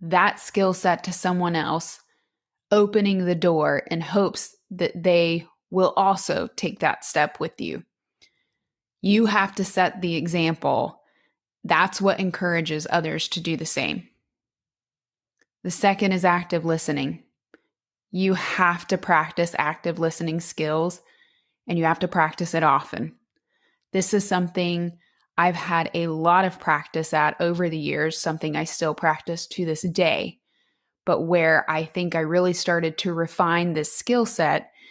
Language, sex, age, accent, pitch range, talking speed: English, female, 20-39, American, 165-200 Hz, 145 wpm